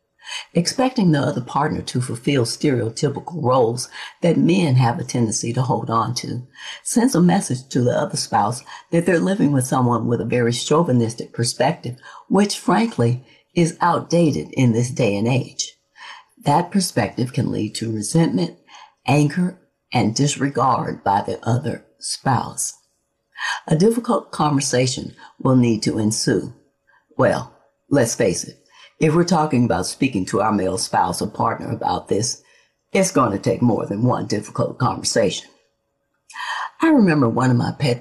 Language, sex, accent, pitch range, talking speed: English, female, American, 115-160 Hz, 150 wpm